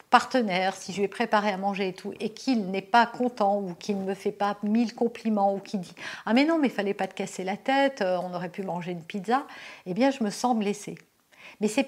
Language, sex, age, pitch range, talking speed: French, female, 50-69, 185-245 Hz, 270 wpm